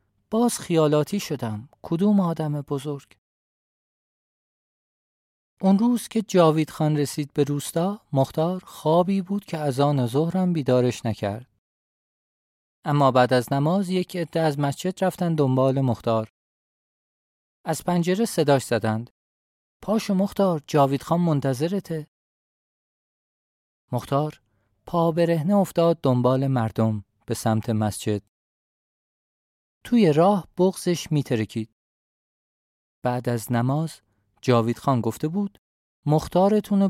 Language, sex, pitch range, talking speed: Persian, male, 110-165 Hz, 105 wpm